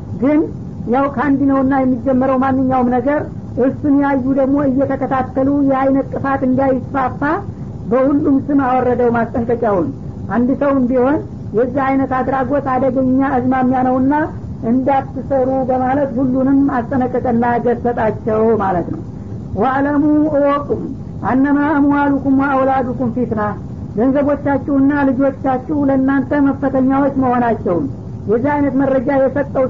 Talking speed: 85 wpm